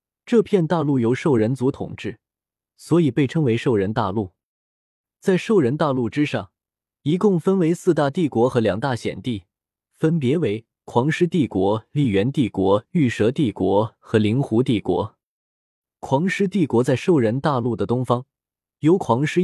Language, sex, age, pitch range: Chinese, male, 20-39, 105-150 Hz